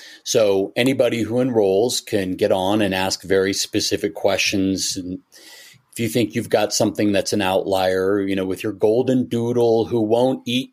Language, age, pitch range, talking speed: English, 40-59, 105-135 Hz, 175 wpm